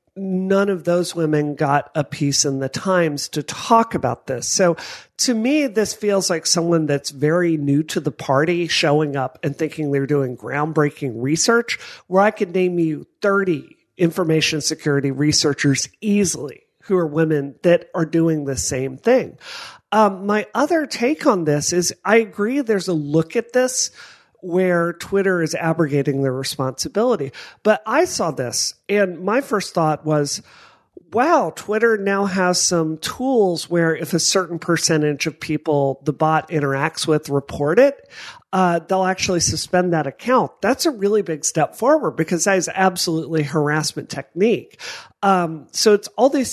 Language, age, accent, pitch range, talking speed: English, 40-59, American, 150-195 Hz, 160 wpm